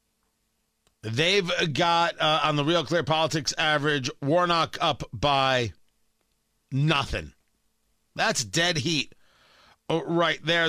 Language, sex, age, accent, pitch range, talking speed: English, male, 50-69, American, 140-170 Hz, 100 wpm